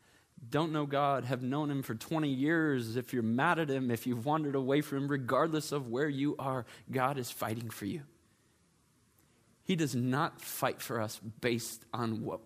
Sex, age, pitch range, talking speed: male, 20-39, 120-155 Hz, 190 wpm